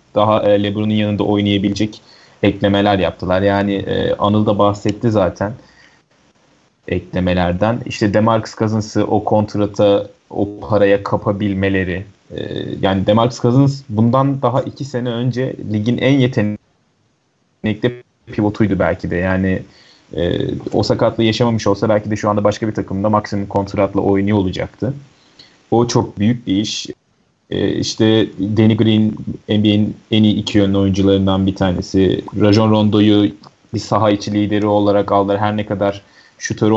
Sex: male